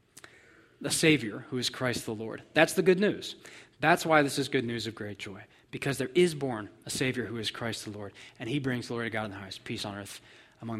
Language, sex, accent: English, male, American